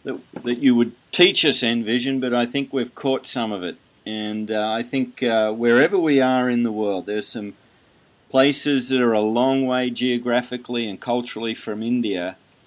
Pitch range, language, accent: 110-135 Hz, English, Australian